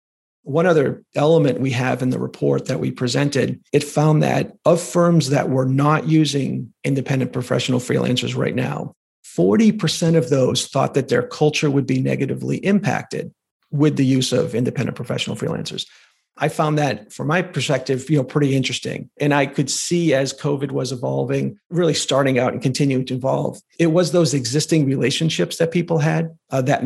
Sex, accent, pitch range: male, American, 130-160 Hz